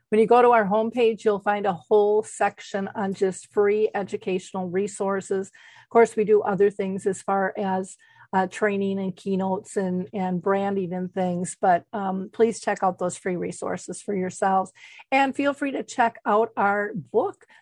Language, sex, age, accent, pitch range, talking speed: English, female, 50-69, American, 200-240 Hz, 175 wpm